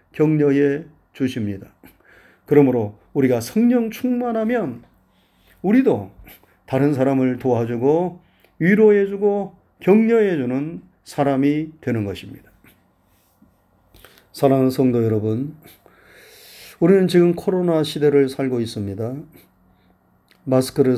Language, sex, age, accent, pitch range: Korean, male, 40-59, native, 125-170 Hz